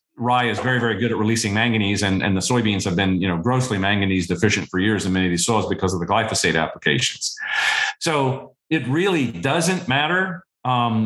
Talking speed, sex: 200 wpm, male